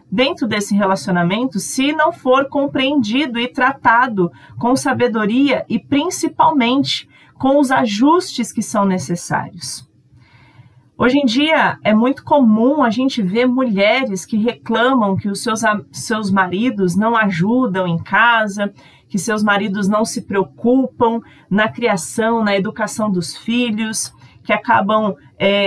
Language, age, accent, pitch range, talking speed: Portuguese, 40-59, Brazilian, 190-245 Hz, 130 wpm